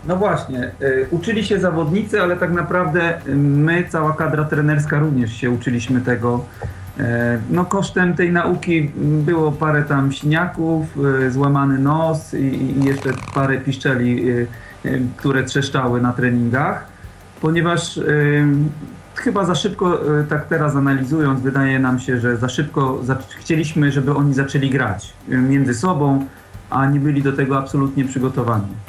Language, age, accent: Polish, 40-59, native